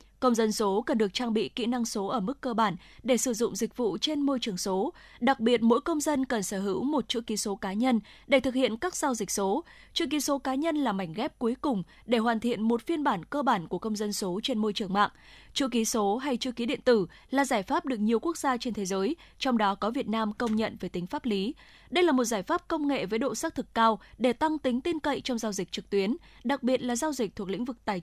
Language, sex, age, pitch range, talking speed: Vietnamese, female, 20-39, 215-270 Hz, 280 wpm